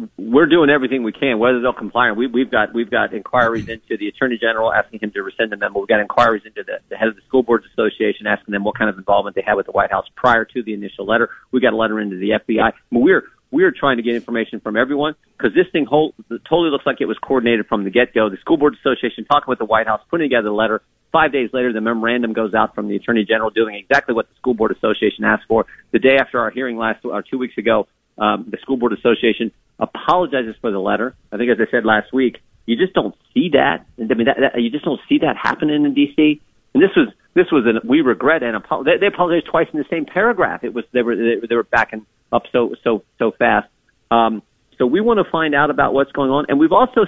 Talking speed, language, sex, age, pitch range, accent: 260 wpm, English, male, 40-59, 115-150 Hz, American